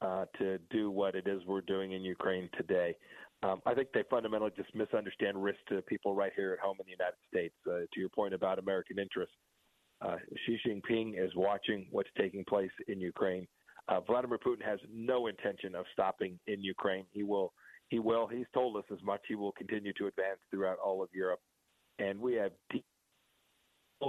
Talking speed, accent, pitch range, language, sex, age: 195 wpm, American, 100-120 Hz, English, male, 40-59